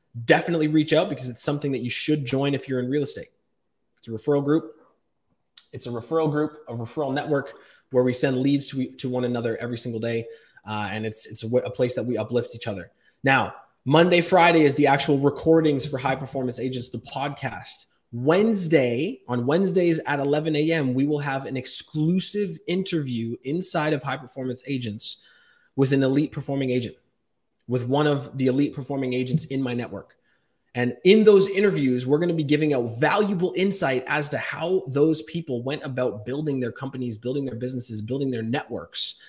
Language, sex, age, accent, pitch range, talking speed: English, male, 20-39, American, 125-155 Hz, 185 wpm